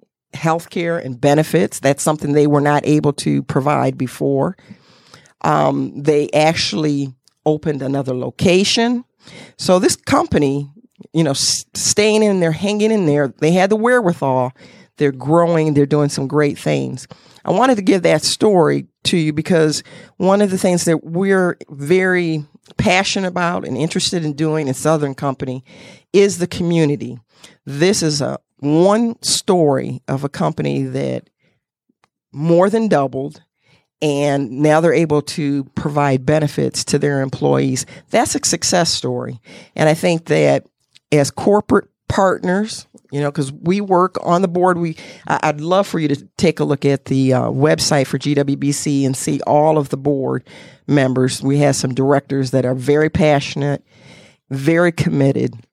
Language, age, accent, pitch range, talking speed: English, 50-69, American, 135-175 Hz, 150 wpm